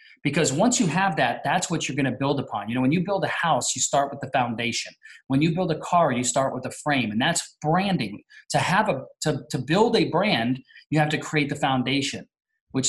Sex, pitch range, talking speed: male, 130-170 Hz, 240 wpm